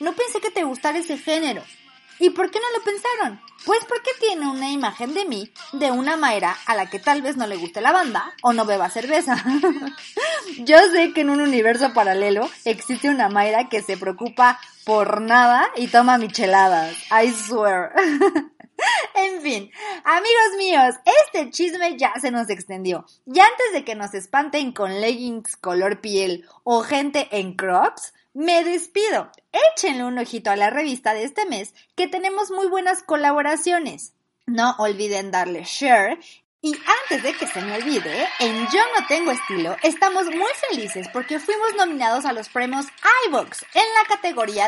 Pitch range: 230-365 Hz